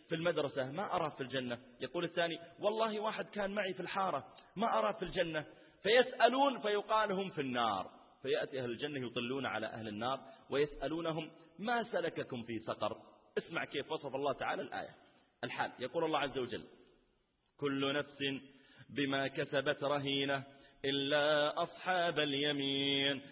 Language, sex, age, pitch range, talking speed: Arabic, male, 30-49, 140-170 Hz, 135 wpm